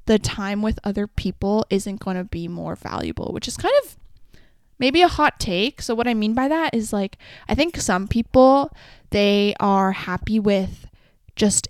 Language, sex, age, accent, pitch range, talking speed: English, female, 10-29, American, 185-230 Hz, 185 wpm